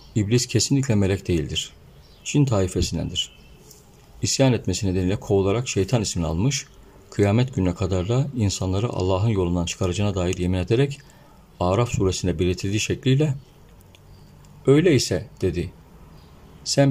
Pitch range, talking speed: 95-125 Hz, 115 wpm